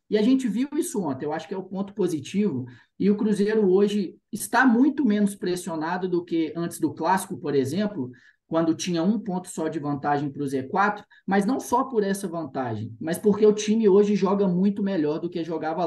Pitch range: 150-200 Hz